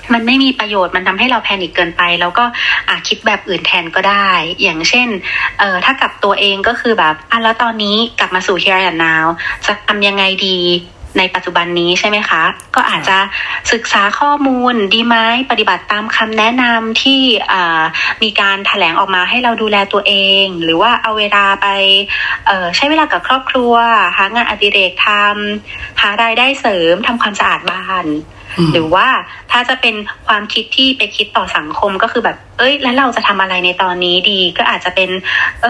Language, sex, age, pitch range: Thai, female, 30-49, 185-235 Hz